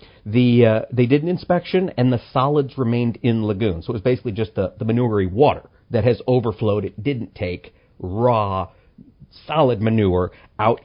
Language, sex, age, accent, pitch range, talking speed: English, male, 50-69, American, 105-145 Hz, 170 wpm